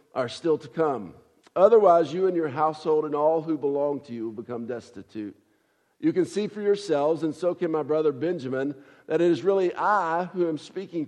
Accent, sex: American, male